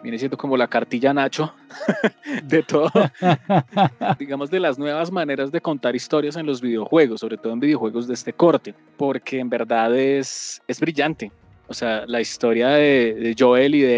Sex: male